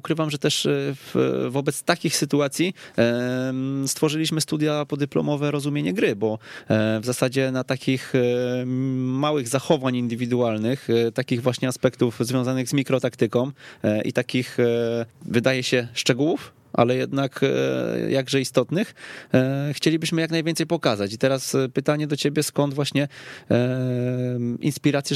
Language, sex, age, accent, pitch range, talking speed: Polish, male, 20-39, native, 115-140 Hz, 110 wpm